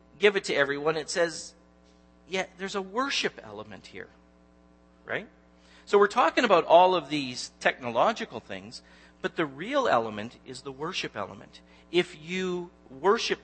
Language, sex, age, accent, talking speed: English, male, 50-69, American, 145 wpm